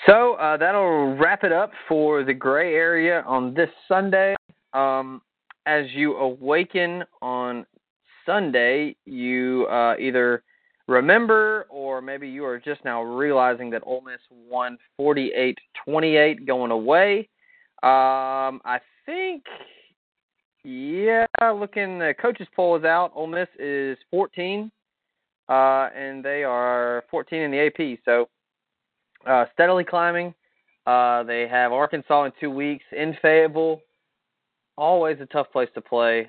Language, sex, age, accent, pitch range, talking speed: English, male, 20-39, American, 125-165 Hz, 130 wpm